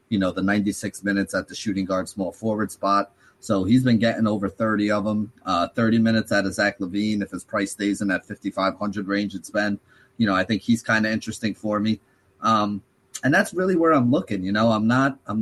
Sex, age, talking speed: male, 30-49, 230 wpm